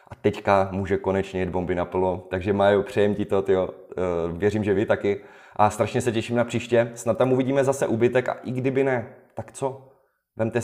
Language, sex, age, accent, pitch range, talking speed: Czech, male, 30-49, native, 95-120 Hz, 190 wpm